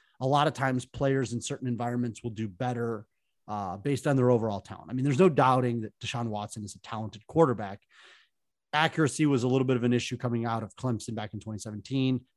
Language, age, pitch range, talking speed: English, 30-49, 110-140 Hz, 215 wpm